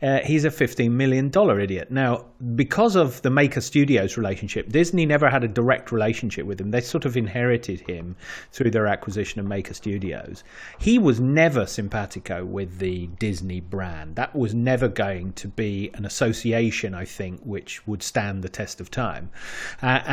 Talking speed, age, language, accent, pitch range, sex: 175 wpm, 40-59, English, British, 105-140 Hz, male